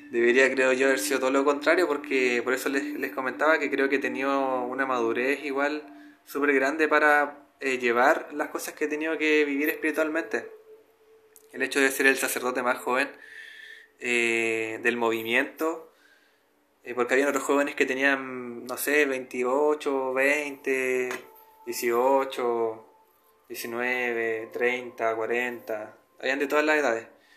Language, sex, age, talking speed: Spanish, male, 20-39, 145 wpm